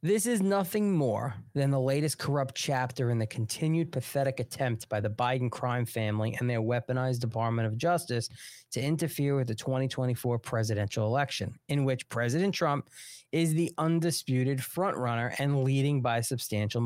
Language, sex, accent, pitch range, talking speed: English, male, American, 125-170 Hz, 155 wpm